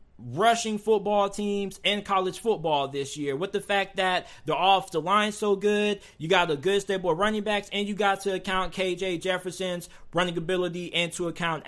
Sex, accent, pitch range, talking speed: male, American, 175-210 Hz, 190 wpm